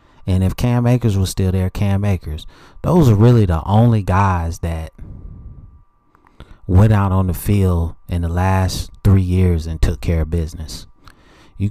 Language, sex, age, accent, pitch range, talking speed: English, male, 30-49, American, 85-105 Hz, 165 wpm